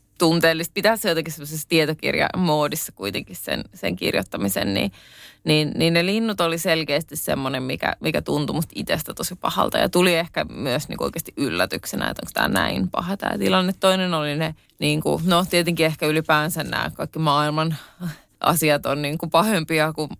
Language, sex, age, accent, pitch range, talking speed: Finnish, female, 20-39, native, 155-195 Hz, 170 wpm